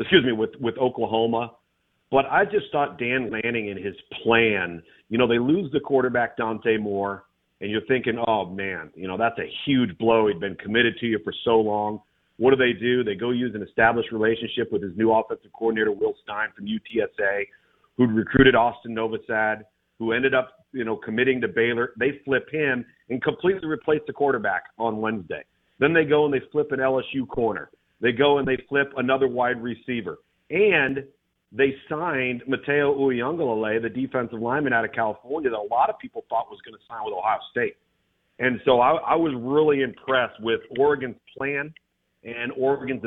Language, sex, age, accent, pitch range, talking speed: English, male, 40-59, American, 115-135 Hz, 190 wpm